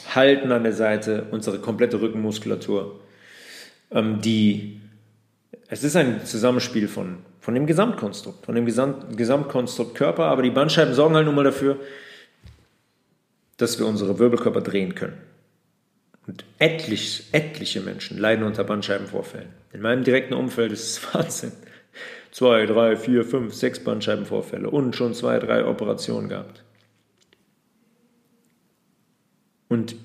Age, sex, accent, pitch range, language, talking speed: 40-59, male, German, 110-160 Hz, German, 125 wpm